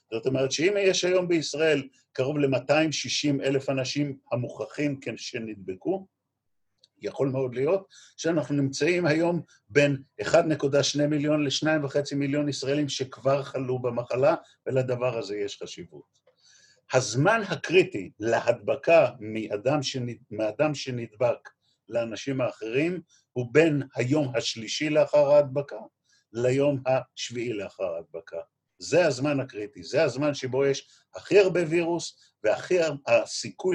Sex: male